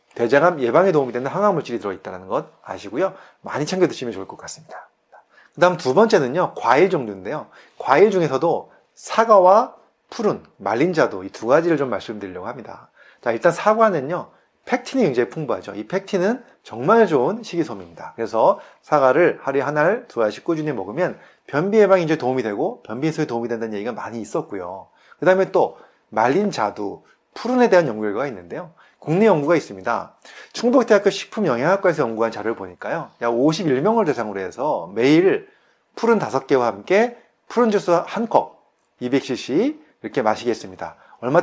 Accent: native